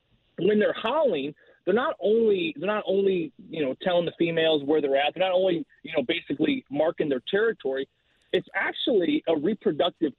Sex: male